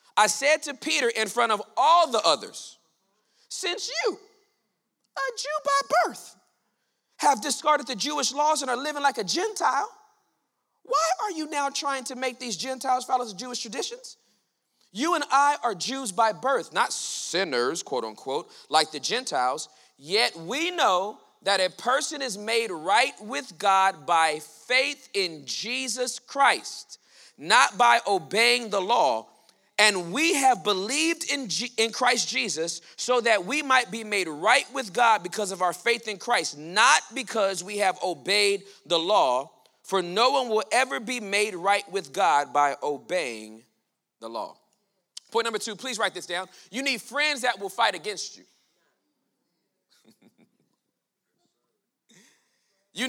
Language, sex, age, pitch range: English, male, 40-59, 195-275 Hz